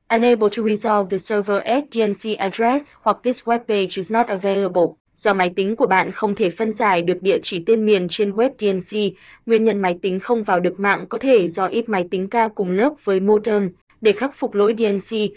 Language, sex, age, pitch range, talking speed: Vietnamese, female, 20-39, 195-225 Hz, 215 wpm